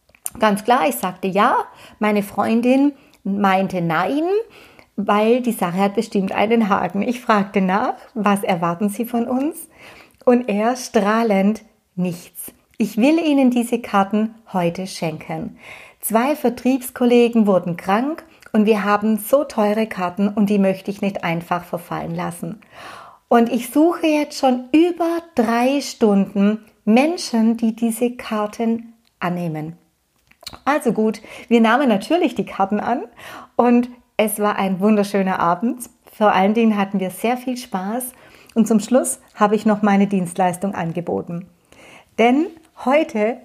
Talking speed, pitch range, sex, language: 135 wpm, 200-250 Hz, female, German